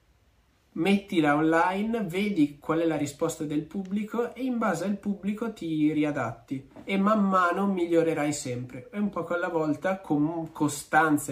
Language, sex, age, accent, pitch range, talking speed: Italian, male, 20-39, native, 145-180 Hz, 150 wpm